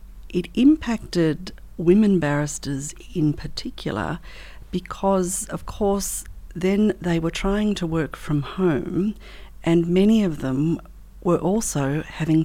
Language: English